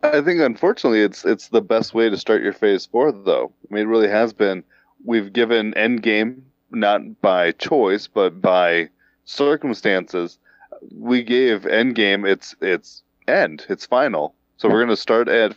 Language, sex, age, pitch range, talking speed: English, male, 20-39, 95-110 Hz, 160 wpm